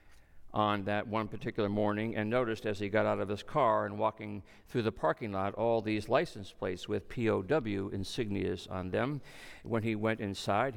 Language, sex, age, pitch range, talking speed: English, male, 50-69, 95-110 Hz, 185 wpm